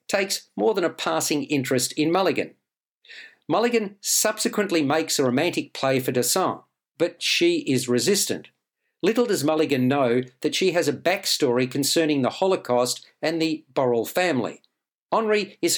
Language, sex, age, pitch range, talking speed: English, male, 50-69, 140-185 Hz, 145 wpm